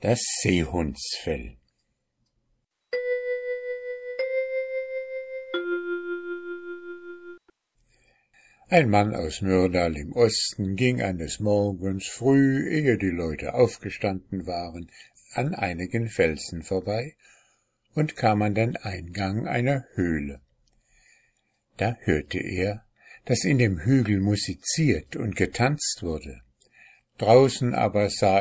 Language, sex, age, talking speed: German, male, 60-79, 90 wpm